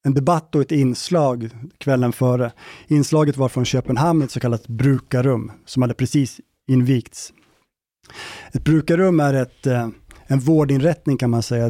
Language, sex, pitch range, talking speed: Swedish, male, 120-150 Hz, 145 wpm